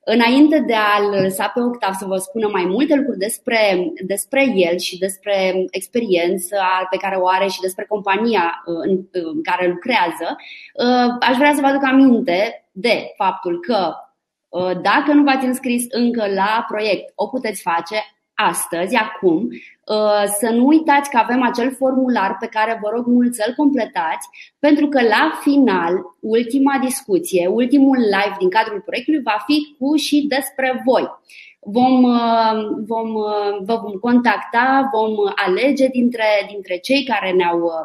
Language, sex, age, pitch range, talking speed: Romanian, female, 20-39, 200-270 Hz, 145 wpm